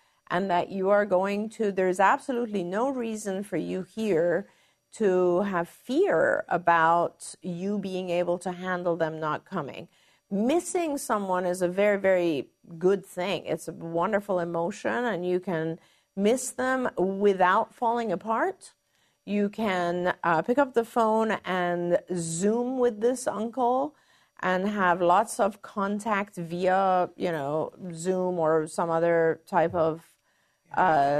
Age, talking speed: 50-69, 140 wpm